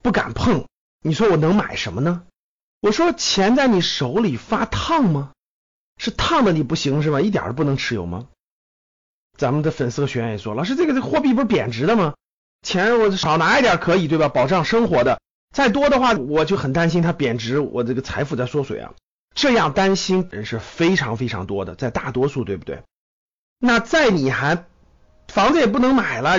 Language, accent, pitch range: Chinese, native, 140-225 Hz